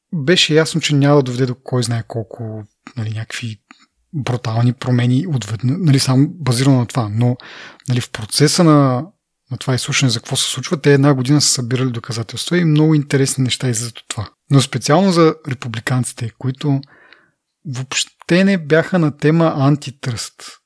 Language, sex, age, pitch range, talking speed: Bulgarian, male, 30-49, 125-150 Hz, 160 wpm